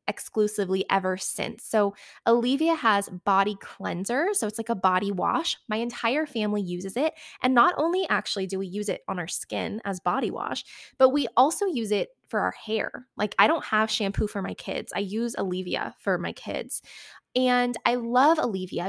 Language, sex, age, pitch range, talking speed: English, female, 20-39, 195-245 Hz, 185 wpm